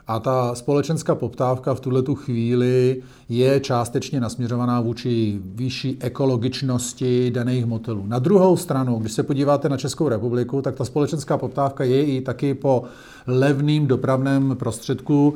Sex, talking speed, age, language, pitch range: male, 135 wpm, 40-59, Czech, 125-145 Hz